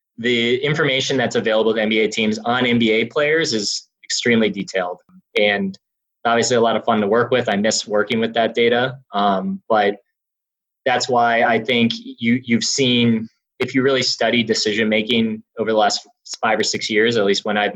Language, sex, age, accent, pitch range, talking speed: English, male, 20-39, American, 105-130 Hz, 185 wpm